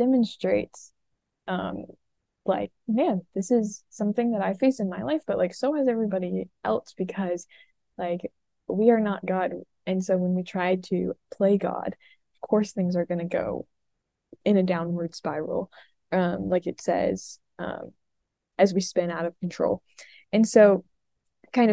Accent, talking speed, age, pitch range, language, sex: American, 160 wpm, 10-29, 175-210 Hz, English, female